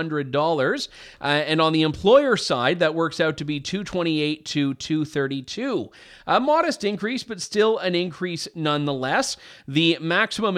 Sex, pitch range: male, 140-175 Hz